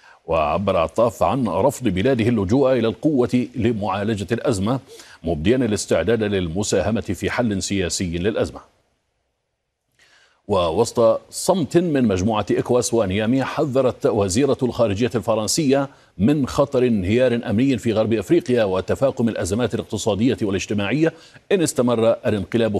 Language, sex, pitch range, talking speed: Arabic, male, 105-125 Hz, 110 wpm